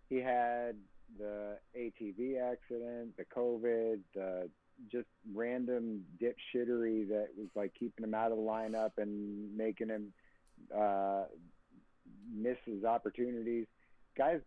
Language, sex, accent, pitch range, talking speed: English, male, American, 105-130 Hz, 115 wpm